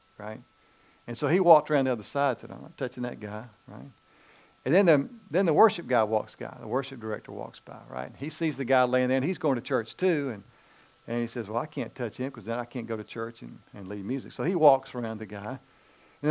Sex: male